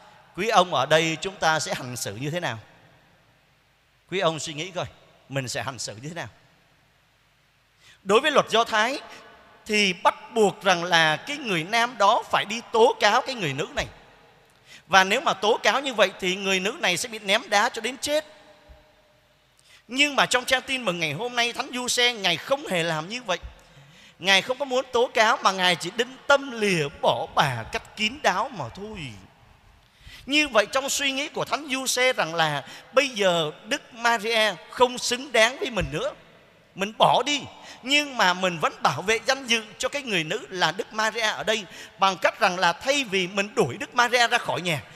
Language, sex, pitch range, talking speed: Vietnamese, male, 165-245 Hz, 205 wpm